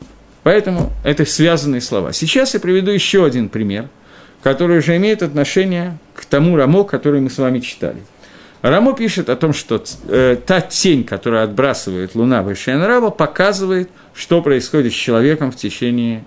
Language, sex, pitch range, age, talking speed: Russian, male, 125-185 Hz, 50-69, 150 wpm